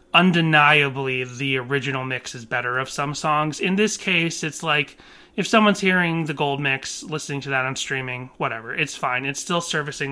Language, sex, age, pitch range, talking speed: English, male, 30-49, 135-165 Hz, 185 wpm